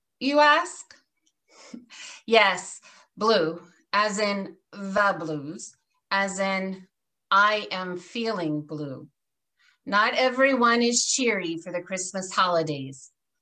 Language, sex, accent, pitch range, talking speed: English, female, American, 180-240 Hz, 100 wpm